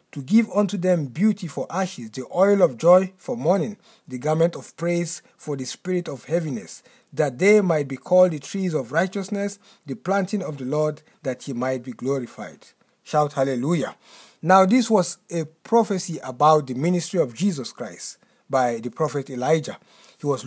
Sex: male